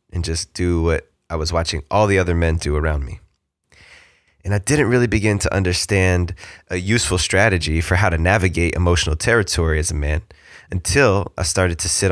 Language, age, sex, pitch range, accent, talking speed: English, 20-39, male, 85-105 Hz, American, 190 wpm